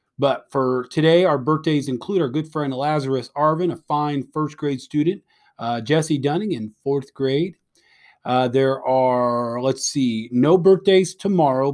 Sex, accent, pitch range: male, American, 130-180 Hz